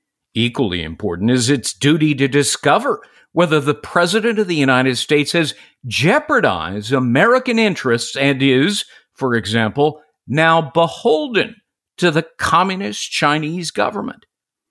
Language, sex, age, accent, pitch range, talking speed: English, male, 50-69, American, 130-175 Hz, 120 wpm